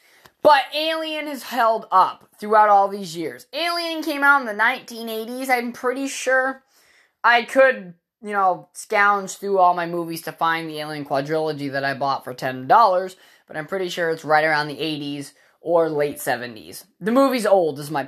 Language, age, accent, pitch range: English, 20-39, American, 205-290 Hz